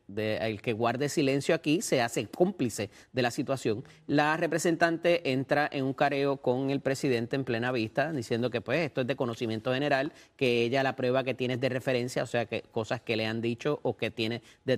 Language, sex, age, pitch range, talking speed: Spanish, male, 30-49, 120-145 Hz, 210 wpm